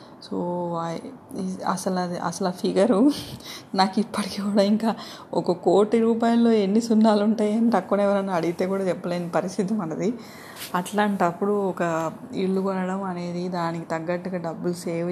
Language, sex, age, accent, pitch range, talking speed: Telugu, female, 20-39, native, 170-200 Hz, 125 wpm